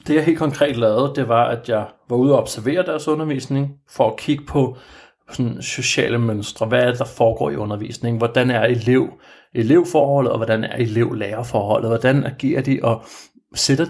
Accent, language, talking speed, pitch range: native, Danish, 180 wpm, 110-130 Hz